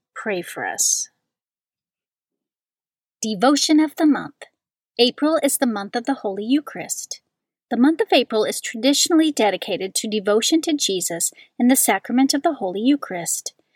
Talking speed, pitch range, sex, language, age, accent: 145 wpm, 210-275 Hz, female, English, 40-59, American